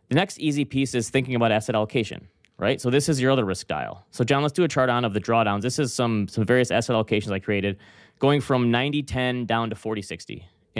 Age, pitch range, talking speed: 20-39, 105-130 Hz, 235 wpm